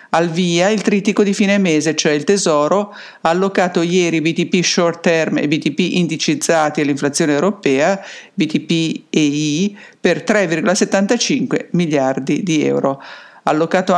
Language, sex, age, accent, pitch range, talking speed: English, female, 50-69, Italian, 155-195 Hz, 130 wpm